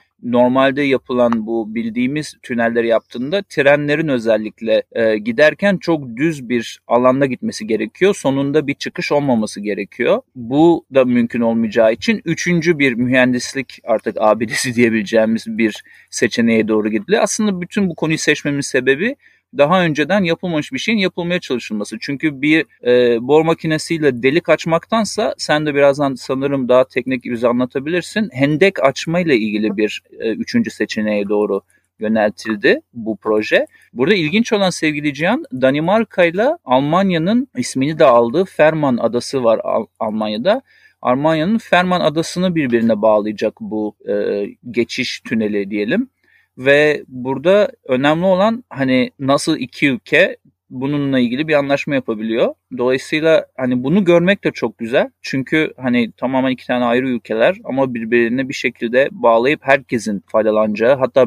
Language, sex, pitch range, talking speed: Turkish, male, 115-160 Hz, 130 wpm